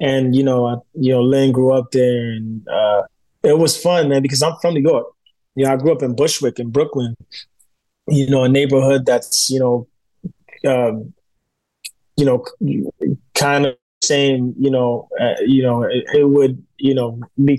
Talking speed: 175 wpm